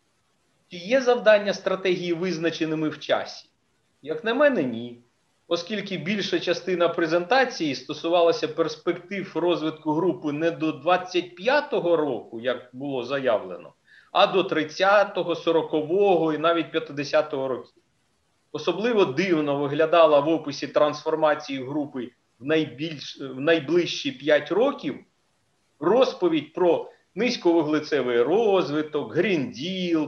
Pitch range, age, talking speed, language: 155-195 Hz, 40-59, 100 wpm, Ukrainian